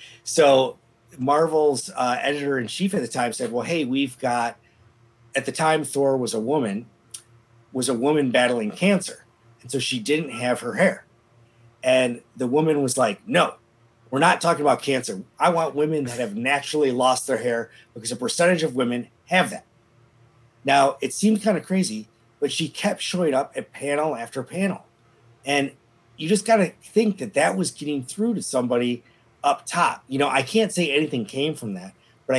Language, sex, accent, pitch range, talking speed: English, male, American, 115-150 Hz, 180 wpm